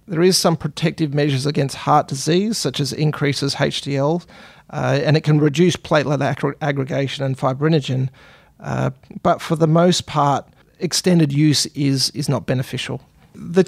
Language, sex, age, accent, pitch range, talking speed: English, male, 40-59, Australian, 140-165 Hz, 155 wpm